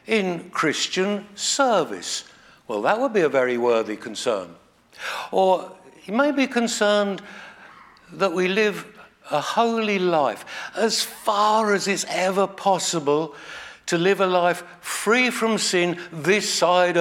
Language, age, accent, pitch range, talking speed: English, 60-79, British, 140-205 Hz, 130 wpm